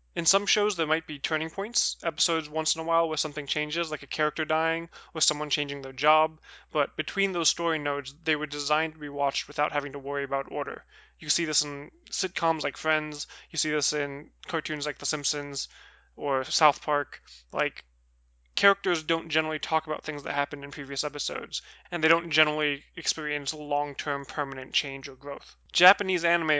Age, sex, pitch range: 20-39, male, 145-160 Hz